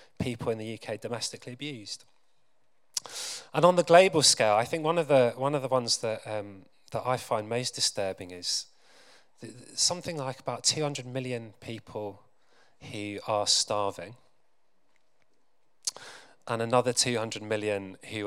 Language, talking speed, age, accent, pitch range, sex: English, 145 wpm, 30-49, British, 105-140 Hz, male